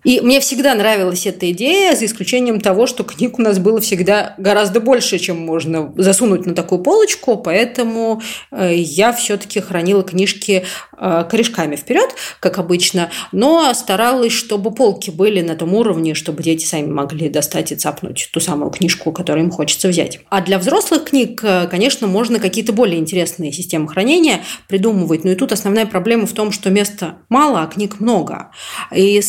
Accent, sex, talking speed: native, female, 165 wpm